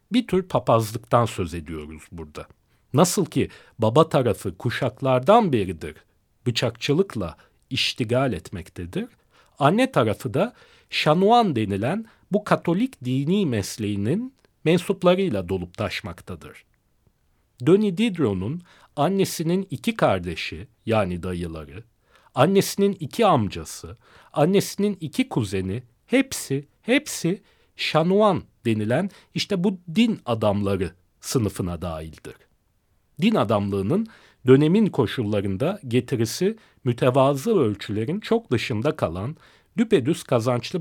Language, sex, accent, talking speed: Turkish, male, native, 90 wpm